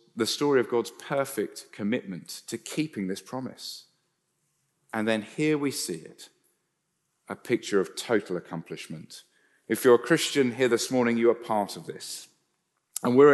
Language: English